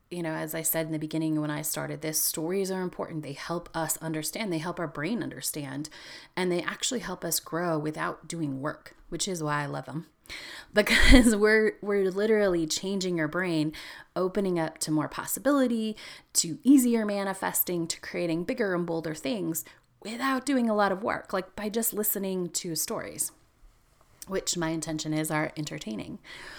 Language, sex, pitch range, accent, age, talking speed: English, female, 155-190 Hz, American, 30-49, 175 wpm